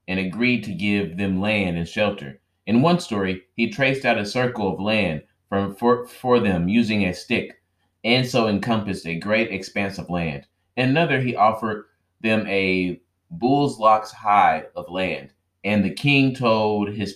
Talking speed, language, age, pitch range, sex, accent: 170 wpm, English, 30-49, 90-110 Hz, male, American